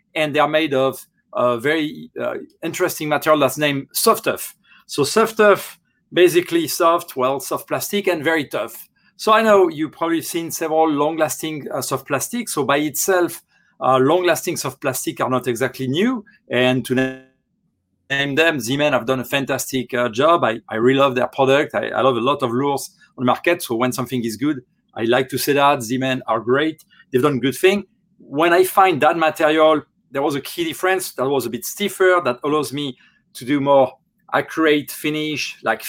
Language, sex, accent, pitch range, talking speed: English, male, French, 130-180 Hz, 190 wpm